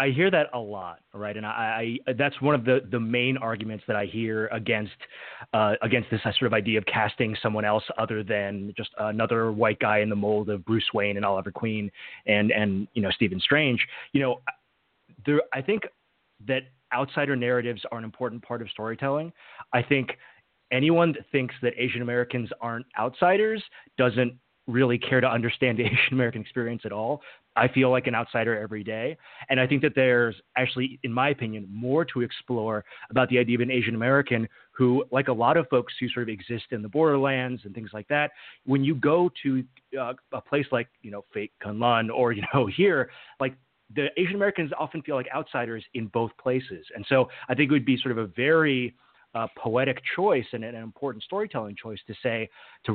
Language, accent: English, American